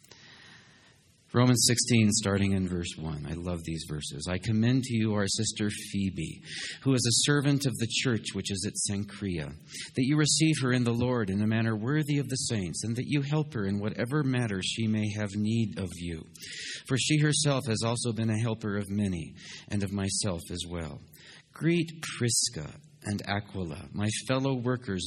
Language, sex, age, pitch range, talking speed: English, male, 40-59, 100-135 Hz, 185 wpm